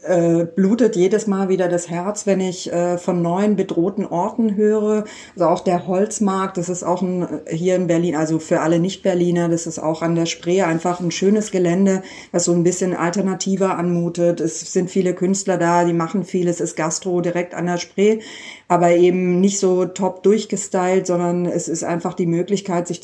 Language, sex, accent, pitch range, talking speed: German, female, German, 175-195 Hz, 185 wpm